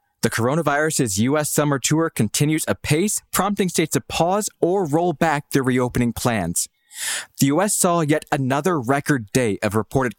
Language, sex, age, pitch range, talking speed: English, male, 20-39, 110-155 Hz, 155 wpm